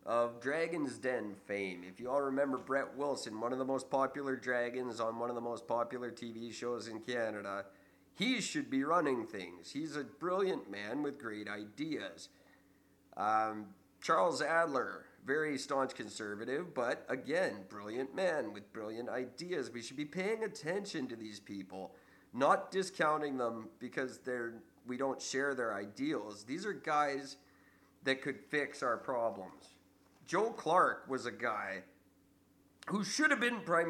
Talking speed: 155 wpm